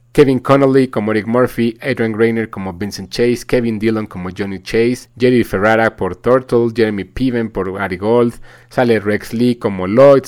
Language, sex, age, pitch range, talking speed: Spanish, male, 30-49, 105-130 Hz, 170 wpm